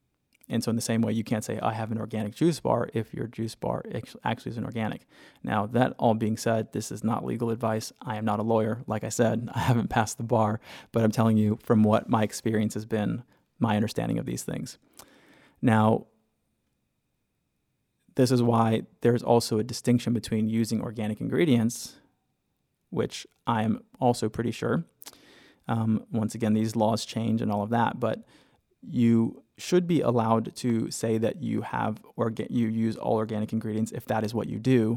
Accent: American